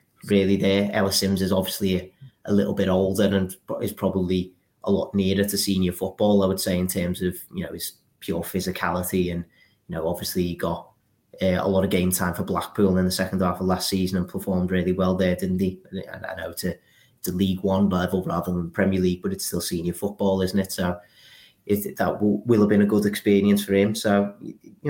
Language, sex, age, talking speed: English, male, 30-49, 225 wpm